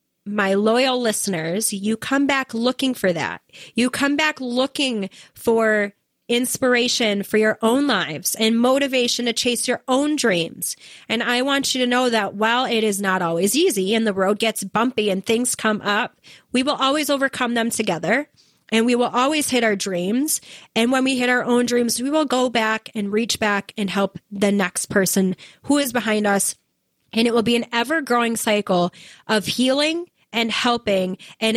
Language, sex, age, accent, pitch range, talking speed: English, female, 30-49, American, 210-250 Hz, 185 wpm